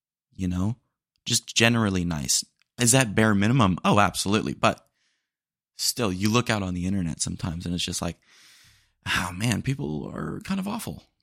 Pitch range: 90-120 Hz